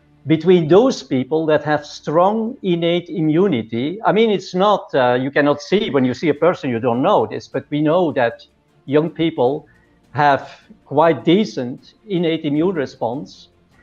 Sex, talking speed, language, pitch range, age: male, 160 wpm, English, 145-190 Hz, 50-69